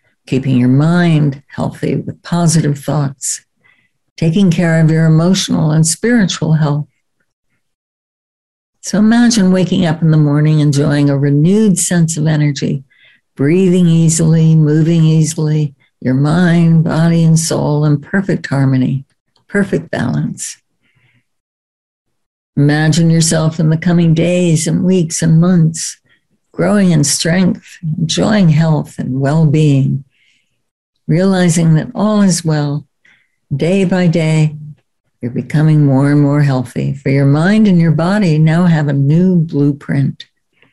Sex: female